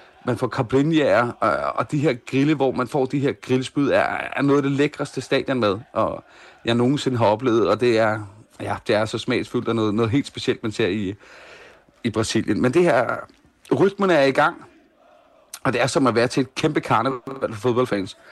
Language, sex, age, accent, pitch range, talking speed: Danish, male, 30-49, native, 115-145 Hz, 205 wpm